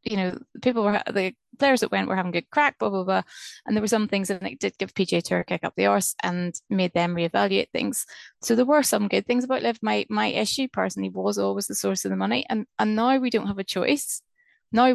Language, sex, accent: English, female, British